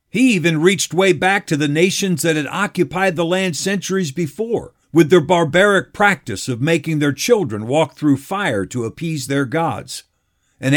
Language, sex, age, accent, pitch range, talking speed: English, male, 50-69, American, 140-190 Hz, 175 wpm